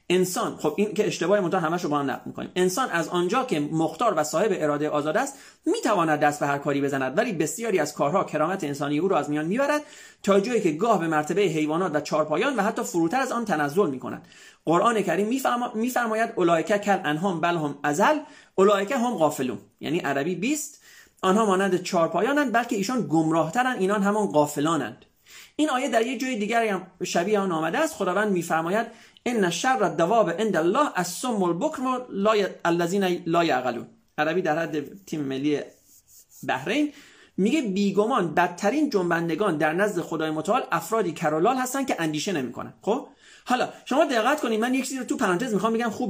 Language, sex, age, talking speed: Persian, male, 30-49, 170 wpm